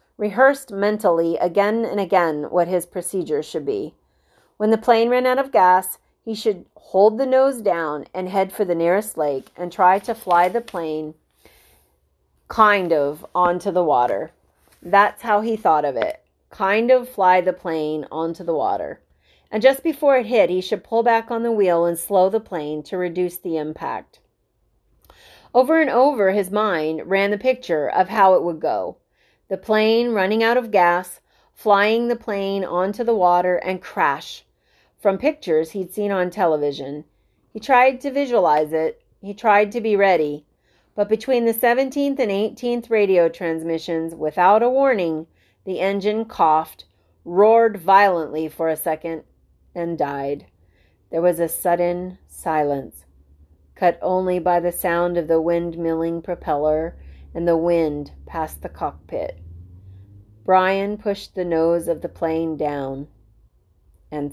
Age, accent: 30-49, American